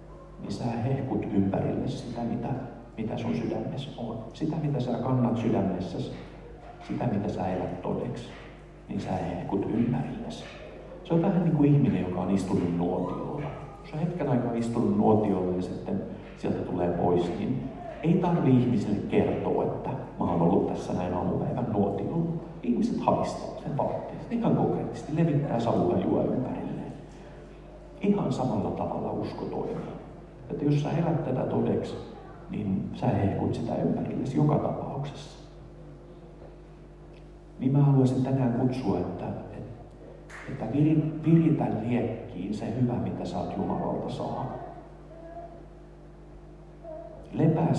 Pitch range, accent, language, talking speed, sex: 105-155 Hz, native, Finnish, 130 wpm, male